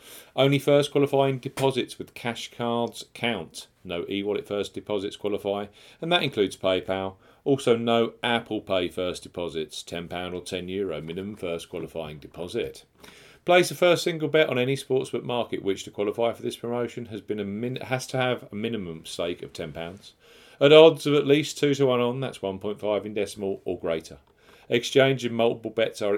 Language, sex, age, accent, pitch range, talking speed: English, male, 40-59, British, 95-130 Hz, 180 wpm